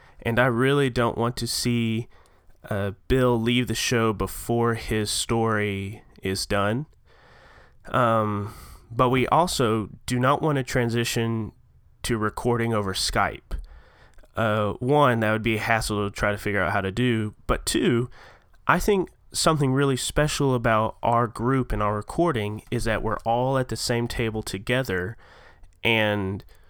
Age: 30-49